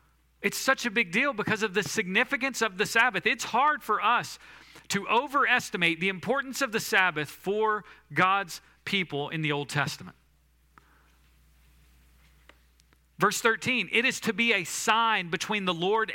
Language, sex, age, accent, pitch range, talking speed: English, male, 40-59, American, 145-235 Hz, 150 wpm